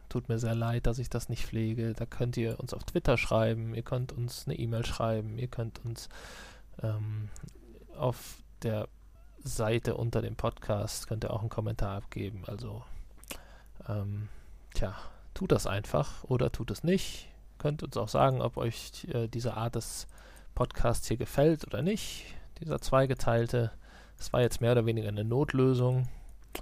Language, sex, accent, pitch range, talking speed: German, male, German, 110-125 Hz, 165 wpm